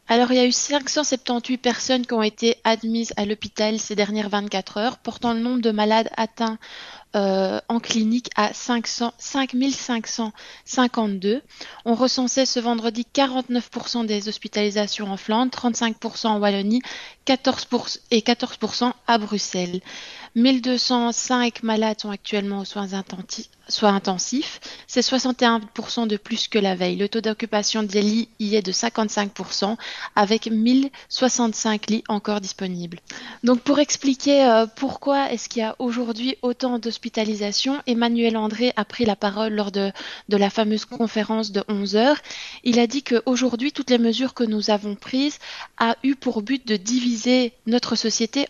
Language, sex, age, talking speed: French, female, 30-49, 145 wpm